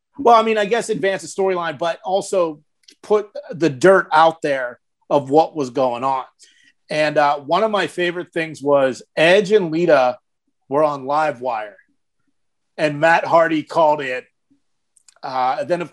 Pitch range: 150-195 Hz